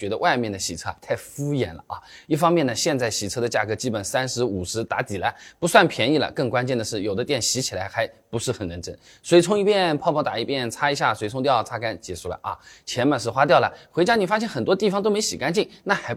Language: Chinese